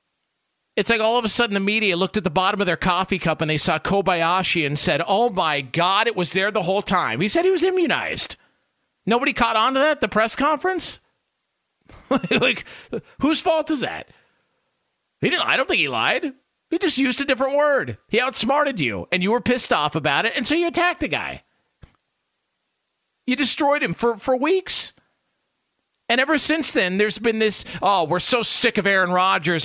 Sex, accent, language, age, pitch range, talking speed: male, American, English, 40-59, 185-260 Hz, 200 wpm